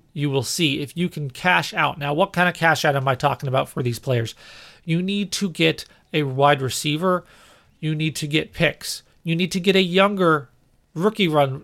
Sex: male